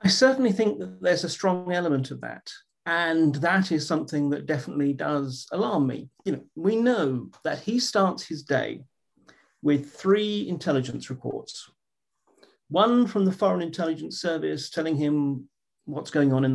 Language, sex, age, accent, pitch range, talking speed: English, male, 40-59, British, 145-195 Hz, 160 wpm